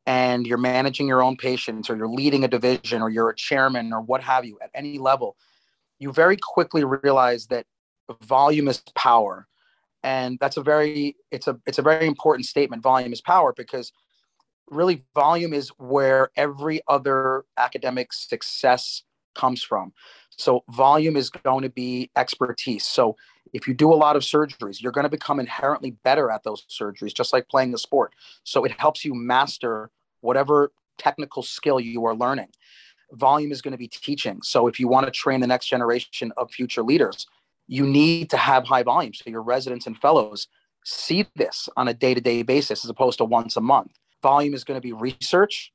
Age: 30-49